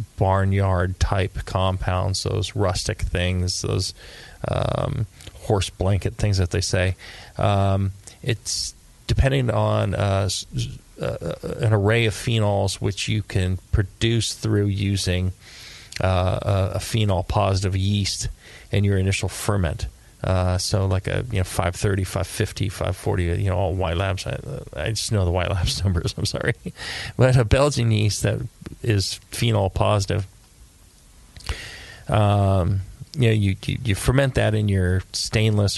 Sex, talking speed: male, 140 wpm